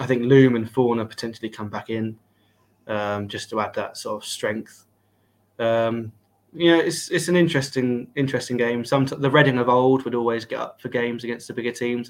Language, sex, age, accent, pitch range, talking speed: English, male, 20-39, British, 105-120 Hz, 205 wpm